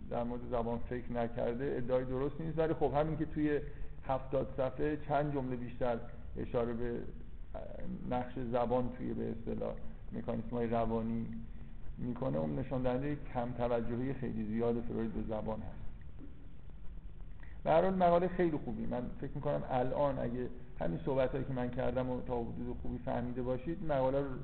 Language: Persian